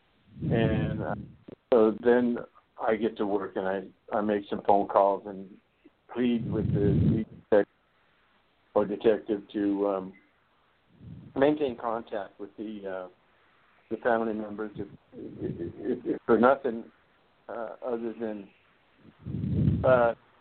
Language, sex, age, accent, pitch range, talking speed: English, male, 60-79, American, 105-120 Hz, 120 wpm